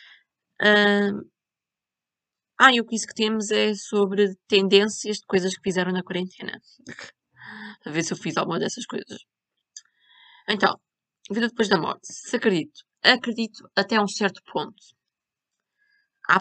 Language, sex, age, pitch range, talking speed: Portuguese, female, 20-39, 185-230 Hz, 135 wpm